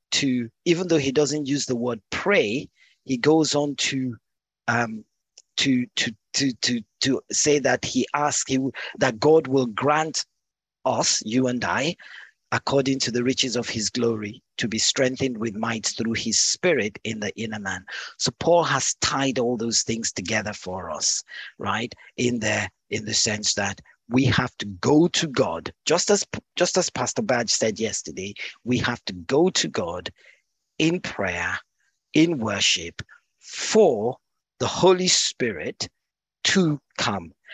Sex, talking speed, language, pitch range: male, 155 wpm, English, 115-155 Hz